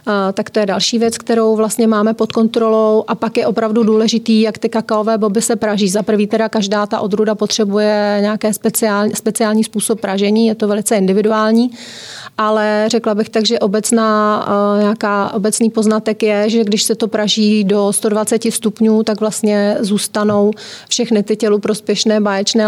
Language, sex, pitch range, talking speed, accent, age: Czech, female, 210-230 Hz, 170 wpm, native, 30-49